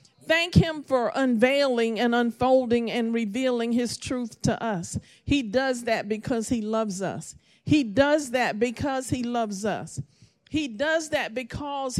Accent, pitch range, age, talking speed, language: American, 225-305 Hz, 50-69, 150 wpm, English